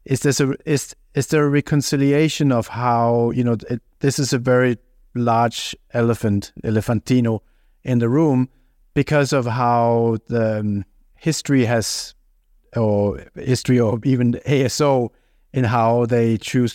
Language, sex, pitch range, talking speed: English, male, 105-125 Hz, 140 wpm